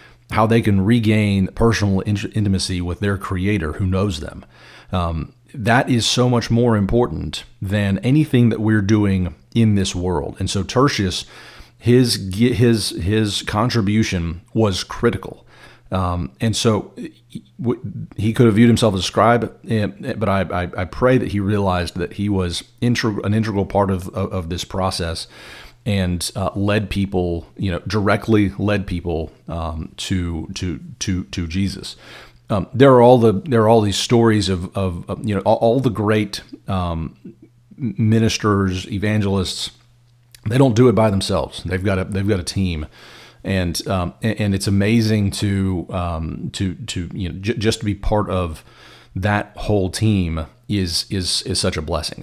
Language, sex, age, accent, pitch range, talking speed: English, male, 40-59, American, 95-110 Hz, 160 wpm